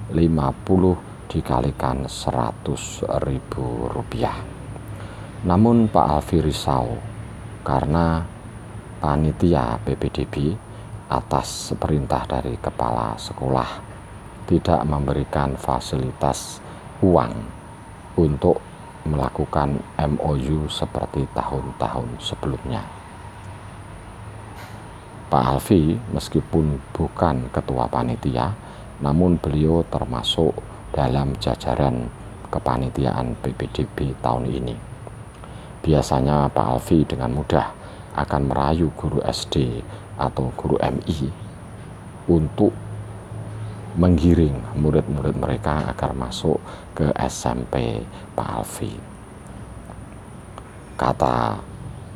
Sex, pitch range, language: male, 70-105 Hz, Indonesian